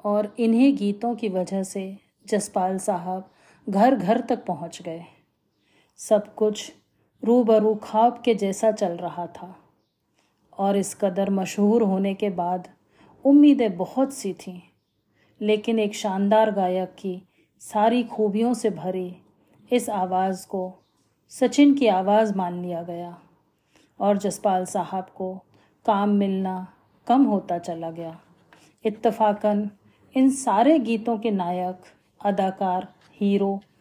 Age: 40-59